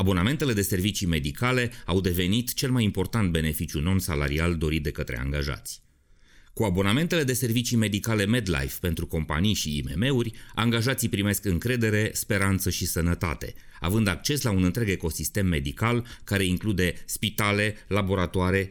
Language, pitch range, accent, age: Romanian, 80-105 Hz, native, 30-49